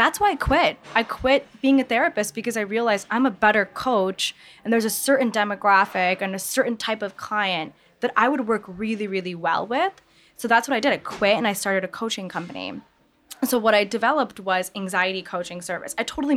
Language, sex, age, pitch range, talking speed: English, female, 10-29, 185-225 Hz, 215 wpm